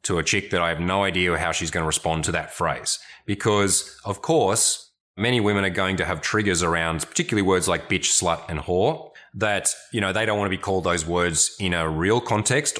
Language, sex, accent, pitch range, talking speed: English, male, Australian, 85-105 Hz, 230 wpm